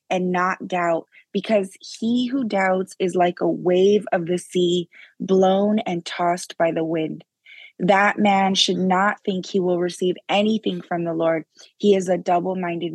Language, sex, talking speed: English, female, 165 wpm